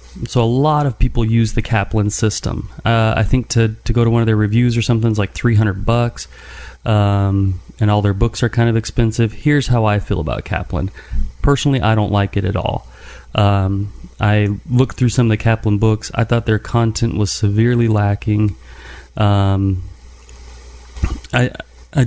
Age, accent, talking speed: 30-49, American, 190 wpm